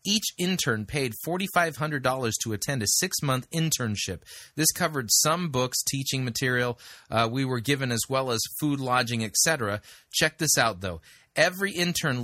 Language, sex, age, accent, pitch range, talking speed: English, male, 30-49, American, 115-155 Hz, 150 wpm